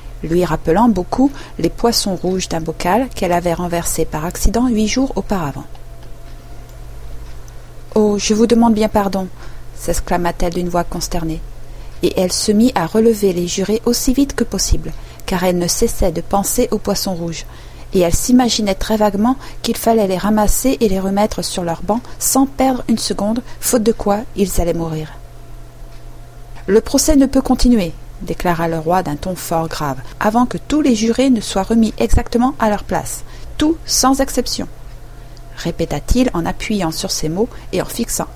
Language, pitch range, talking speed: French, 165-225 Hz, 170 wpm